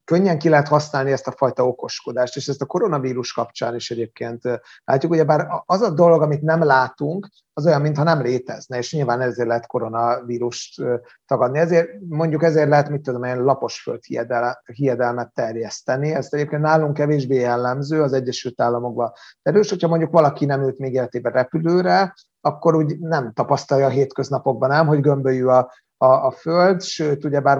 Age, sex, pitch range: 30-49, male, 130-160 Hz